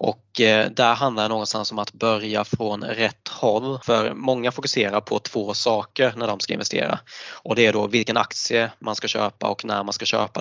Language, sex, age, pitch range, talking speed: Swedish, male, 20-39, 105-115 Hz, 200 wpm